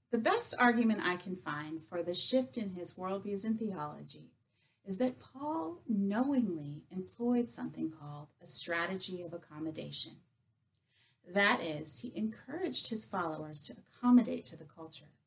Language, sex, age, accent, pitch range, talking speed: English, female, 30-49, American, 155-210 Hz, 140 wpm